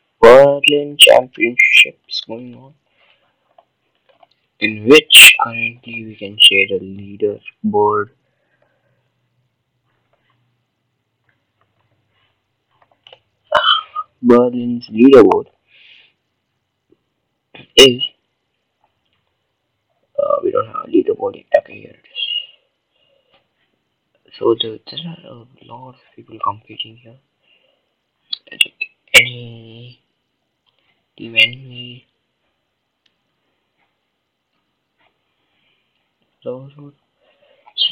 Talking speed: 55 wpm